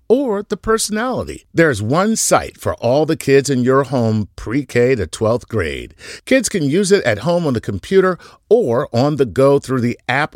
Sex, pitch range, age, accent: male, 110-160 Hz, 50-69, American